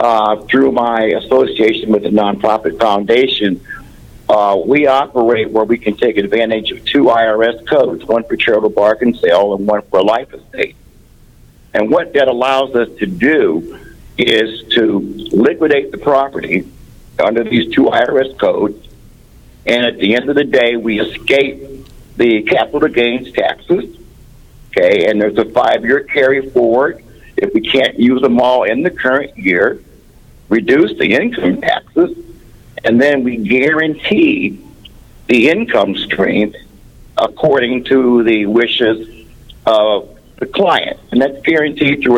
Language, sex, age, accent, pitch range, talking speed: English, male, 60-79, American, 115-140 Hz, 140 wpm